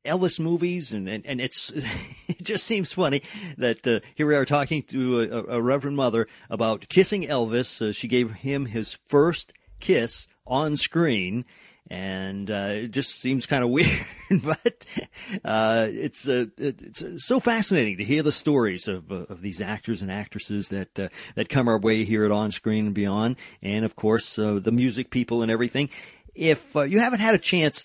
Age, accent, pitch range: 40-59, American, 105-140 Hz